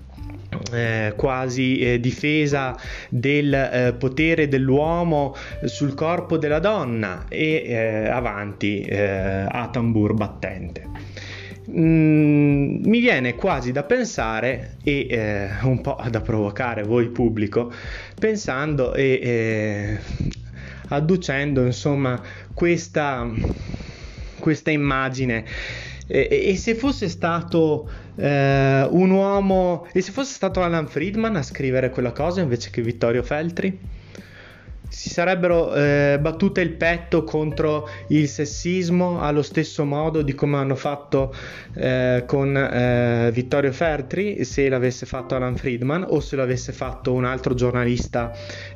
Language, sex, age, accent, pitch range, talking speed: Italian, male, 20-39, native, 110-150 Hz, 120 wpm